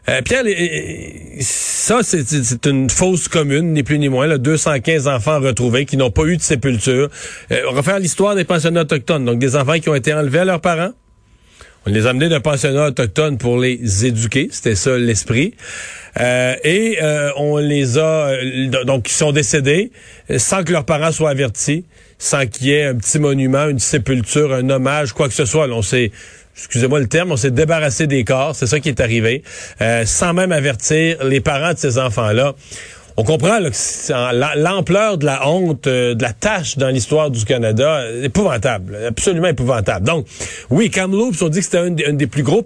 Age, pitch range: 40-59, 125-160 Hz